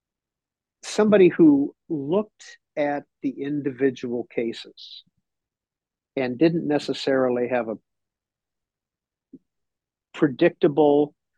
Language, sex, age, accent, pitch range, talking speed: English, male, 50-69, American, 130-165 Hz, 70 wpm